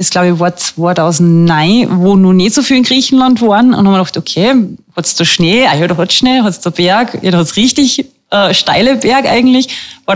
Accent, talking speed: German, 230 wpm